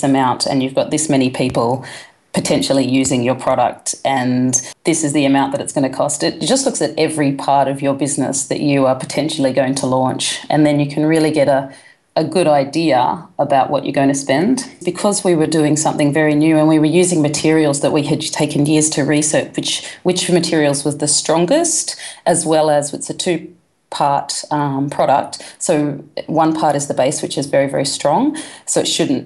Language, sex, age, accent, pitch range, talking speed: English, female, 30-49, Australian, 140-165 Hz, 205 wpm